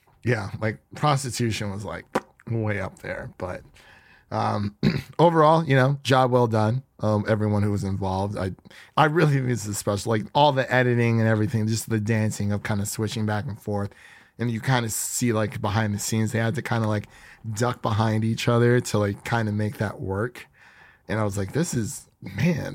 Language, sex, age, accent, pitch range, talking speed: English, male, 30-49, American, 105-135 Hz, 205 wpm